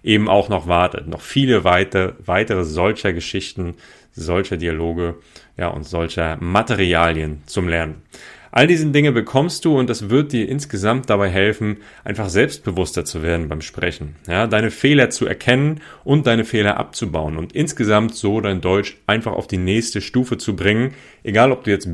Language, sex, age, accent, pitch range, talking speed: German, male, 30-49, German, 90-115 Hz, 165 wpm